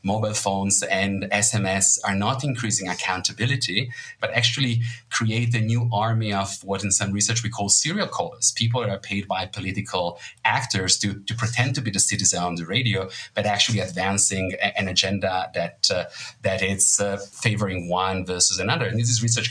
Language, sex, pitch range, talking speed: English, male, 100-120 Hz, 180 wpm